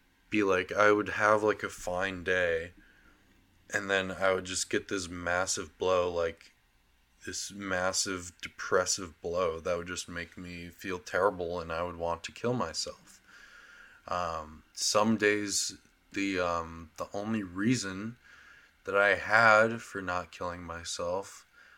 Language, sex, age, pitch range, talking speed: English, male, 20-39, 85-100 Hz, 145 wpm